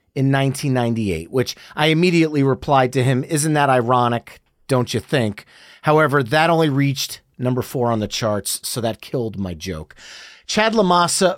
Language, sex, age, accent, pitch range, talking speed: English, male, 30-49, American, 125-175 Hz, 160 wpm